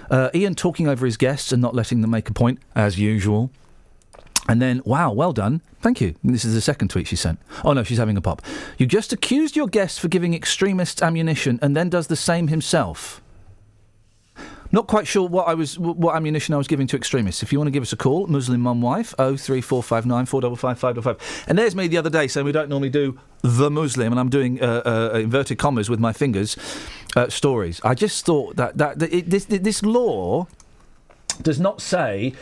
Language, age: English, 40-59